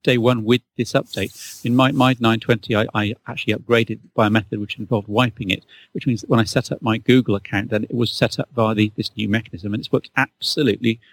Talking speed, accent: 230 wpm, British